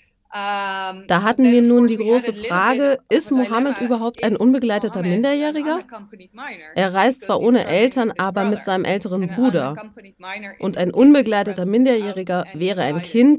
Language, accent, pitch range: German, German, 185-235 Hz